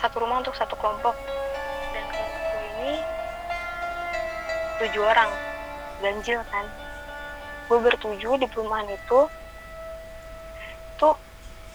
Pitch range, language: 210-260 Hz, Indonesian